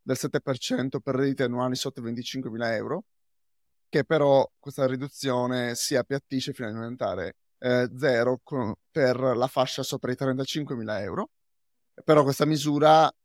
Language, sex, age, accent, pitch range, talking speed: Italian, male, 30-49, native, 125-140 Hz, 140 wpm